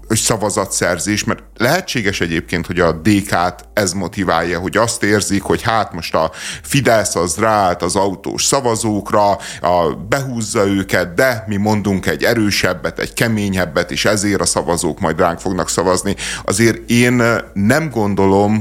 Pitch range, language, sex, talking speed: 95-120 Hz, Hungarian, male, 145 wpm